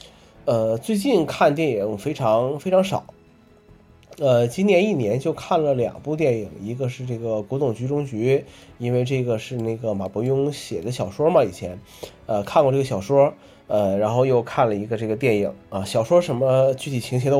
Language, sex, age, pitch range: Chinese, male, 20-39, 105-140 Hz